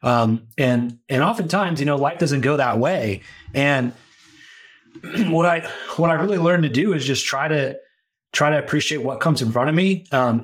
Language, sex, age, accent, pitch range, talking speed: English, male, 30-49, American, 120-150 Hz, 195 wpm